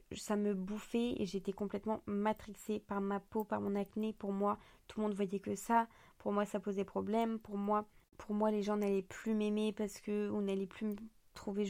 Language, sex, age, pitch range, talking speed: French, female, 20-39, 200-220 Hz, 215 wpm